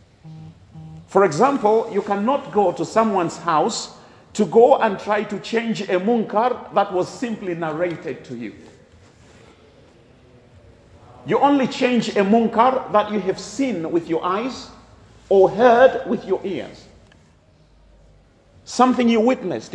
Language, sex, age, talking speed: English, male, 50-69, 130 wpm